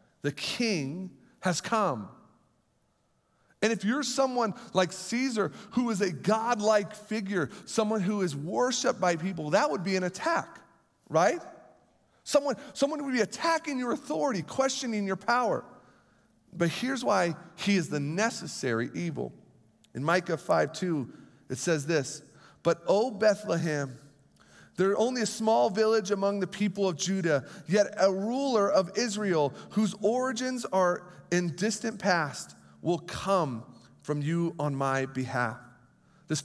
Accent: American